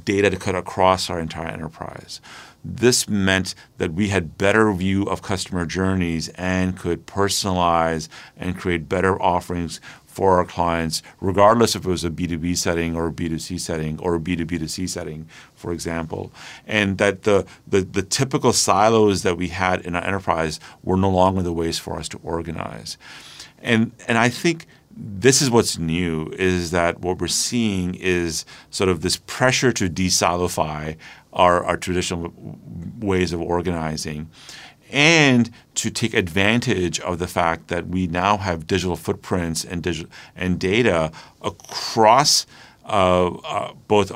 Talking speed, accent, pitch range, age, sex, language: 155 wpm, American, 85-100 Hz, 40-59, male, English